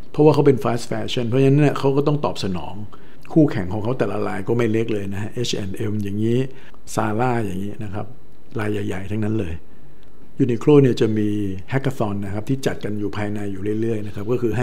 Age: 60-79